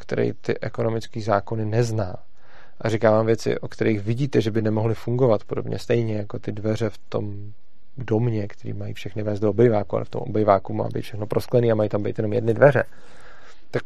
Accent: native